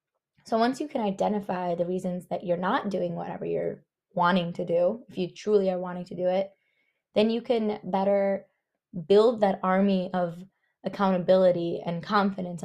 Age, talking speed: 20-39, 165 wpm